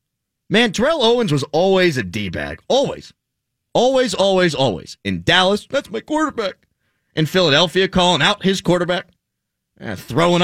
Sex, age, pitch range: male, 30-49, 125-200 Hz